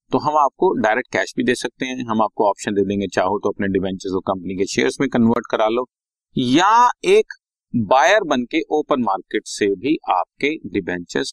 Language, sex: Hindi, male